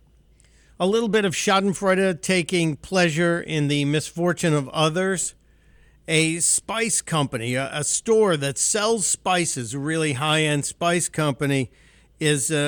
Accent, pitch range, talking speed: American, 140-180 Hz, 125 wpm